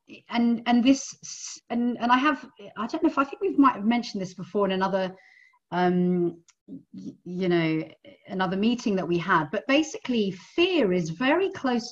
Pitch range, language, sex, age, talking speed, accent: 180-255 Hz, English, female, 40-59, 180 wpm, British